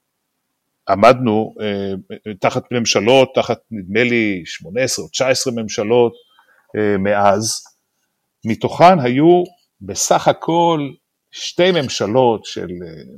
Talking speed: 80 wpm